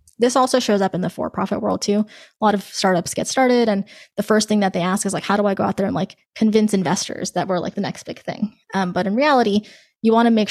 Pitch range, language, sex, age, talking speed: 190-220 Hz, English, female, 20-39, 280 wpm